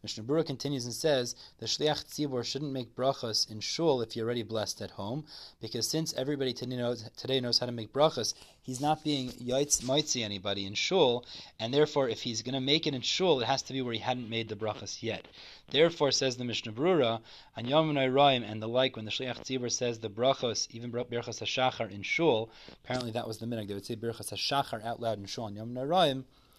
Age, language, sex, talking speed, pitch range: 30-49, English, male, 215 wpm, 115-140 Hz